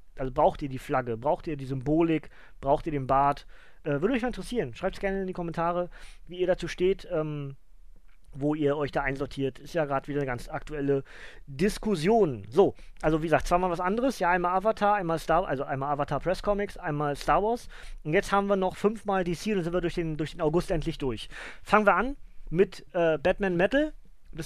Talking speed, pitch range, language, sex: 215 wpm, 145-195 Hz, German, male